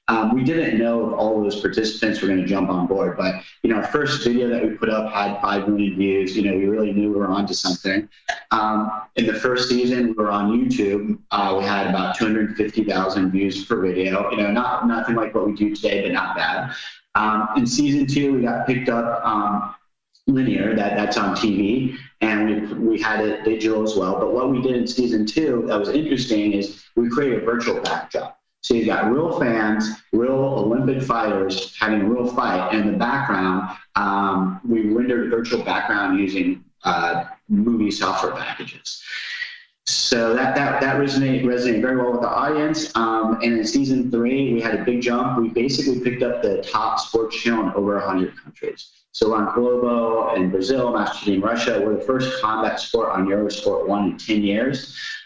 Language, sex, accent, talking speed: English, male, American, 205 wpm